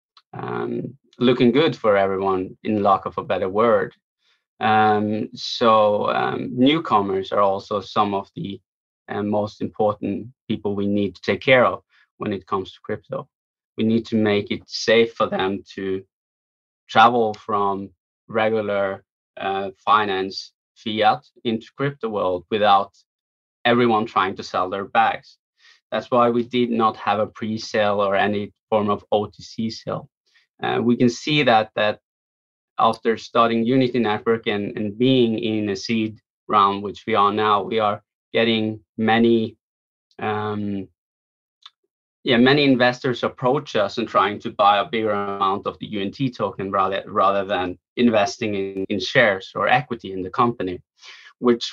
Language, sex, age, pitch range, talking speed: English, male, 20-39, 100-120 Hz, 150 wpm